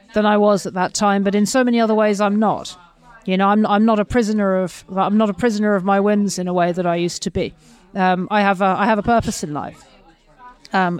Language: English